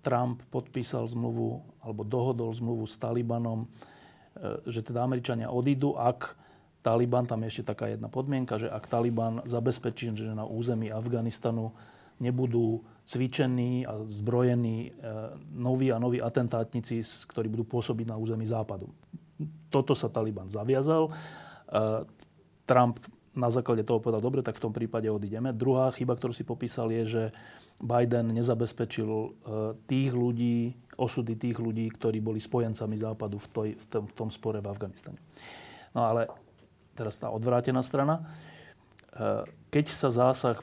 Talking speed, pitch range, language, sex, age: 135 wpm, 110-125 Hz, Slovak, male, 30-49